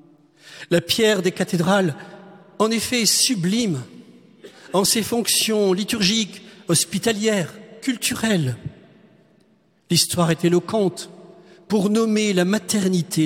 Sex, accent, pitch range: male, French, 150-195 Hz